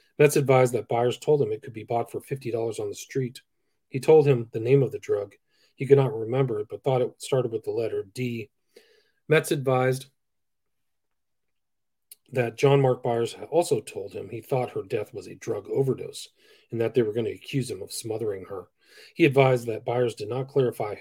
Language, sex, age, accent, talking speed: English, male, 40-59, American, 205 wpm